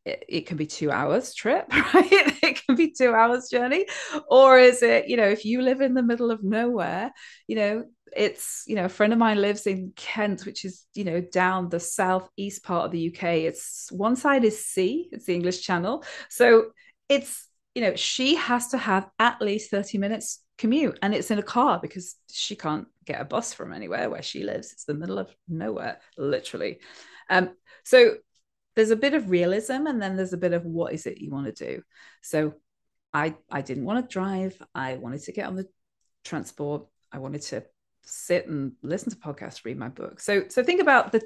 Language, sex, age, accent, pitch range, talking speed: English, female, 20-39, British, 175-250 Hz, 210 wpm